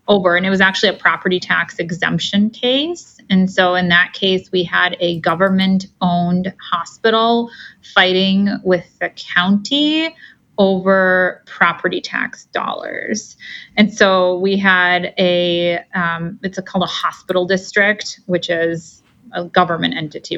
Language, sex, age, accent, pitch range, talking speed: English, female, 30-49, American, 175-205 Hz, 135 wpm